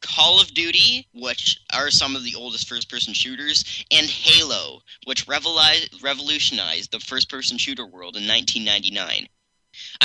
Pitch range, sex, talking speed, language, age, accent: 125-165 Hz, male, 125 wpm, English, 10-29, American